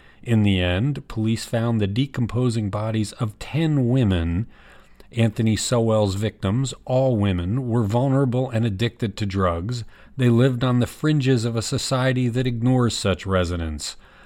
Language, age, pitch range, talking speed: English, 40-59, 95-120 Hz, 145 wpm